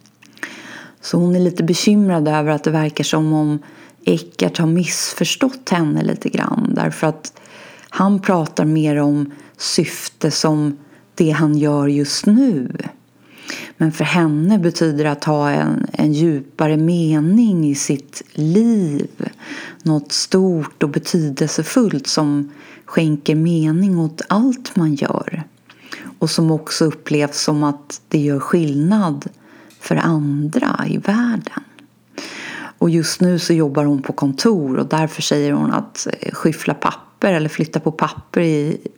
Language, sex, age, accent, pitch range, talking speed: Swedish, female, 30-49, native, 150-195 Hz, 130 wpm